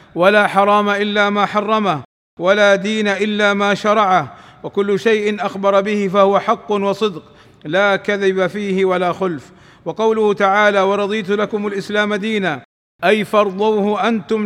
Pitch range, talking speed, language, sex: 190-215 Hz, 130 wpm, Arabic, male